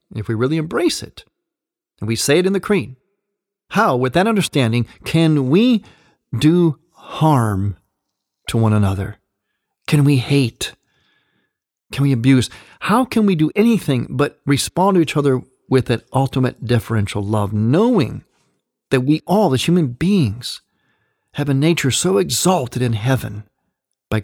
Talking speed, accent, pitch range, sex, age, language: 145 wpm, American, 115-160 Hz, male, 40-59, English